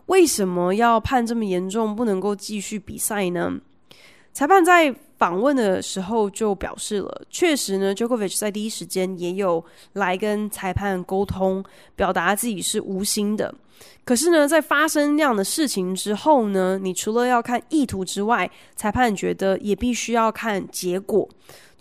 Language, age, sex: Chinese, 20-39, female